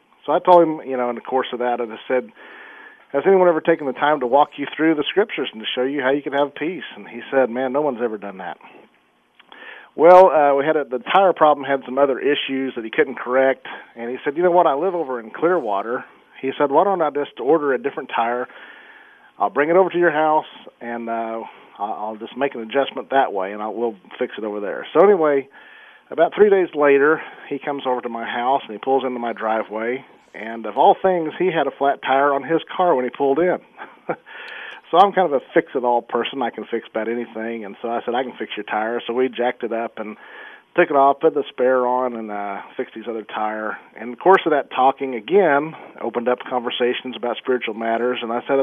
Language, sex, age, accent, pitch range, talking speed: English, male, 40-59, American, 120-145 Hz, 235 wpm